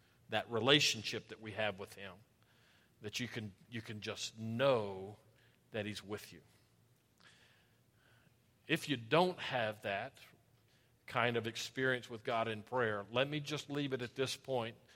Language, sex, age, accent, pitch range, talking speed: English, male, 50-69, American, 115-155 Hz, 150 wpm